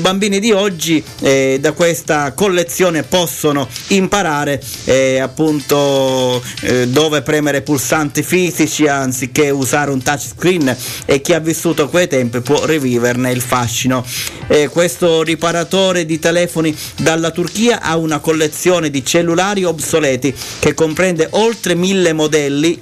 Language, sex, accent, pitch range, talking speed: Italian, male, native, 140-170 Hz, 125 wpm